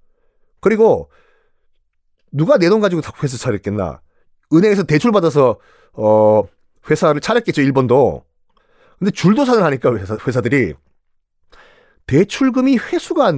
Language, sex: Korean, male